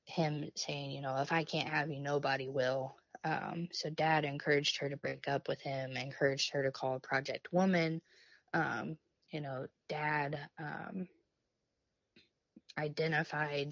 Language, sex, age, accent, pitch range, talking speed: English, female, 10-29, American, 140-165 Hz, 145 wpm